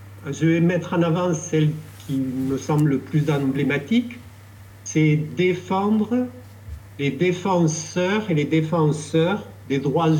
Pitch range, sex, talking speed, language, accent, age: 105-165 Hz, male, 125 wpm, French, French, 50-69